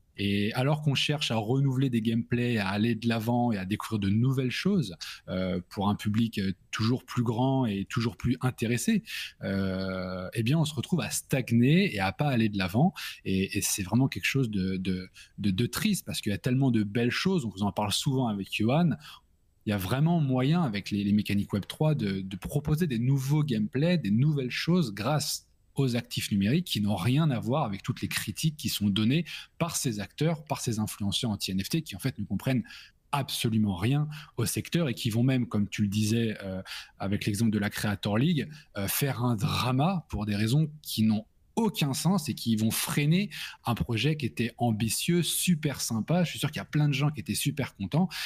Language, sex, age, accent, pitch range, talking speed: French, male, 20-39, French, 105-145 Hz, 215 wpm